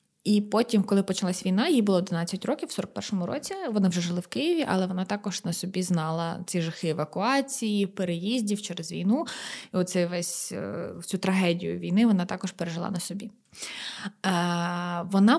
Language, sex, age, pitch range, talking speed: Ukrainian, female, 20-39, 175-215 Hz, 150 wpm